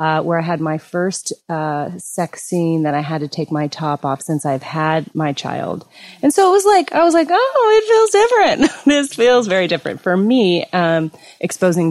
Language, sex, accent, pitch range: English, female, American, 155-190 Hz